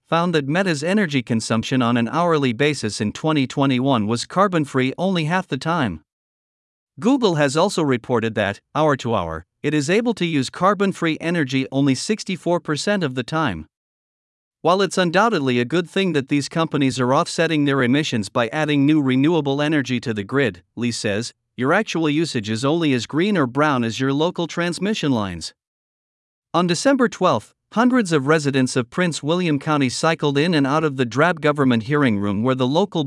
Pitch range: 125-170 Hz